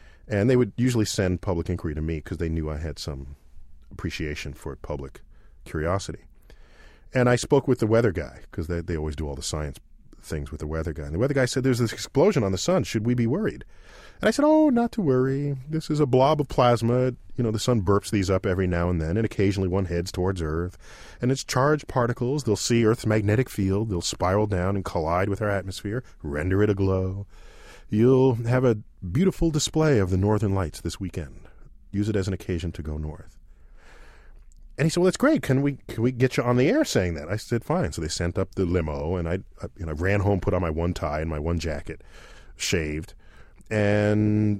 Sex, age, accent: male, 40-59, American